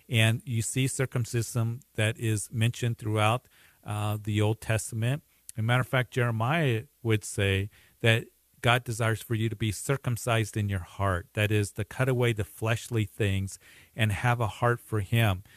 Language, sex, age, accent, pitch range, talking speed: English, male, 40-59, American, 100-115 Hz, 175 wpm